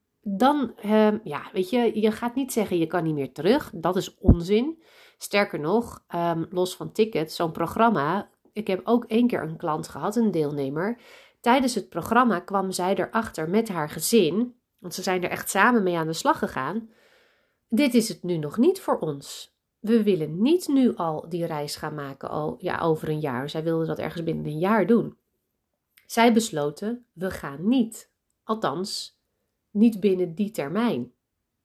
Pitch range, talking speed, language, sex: 170-235 Hz, 180 wpm, Dutch, female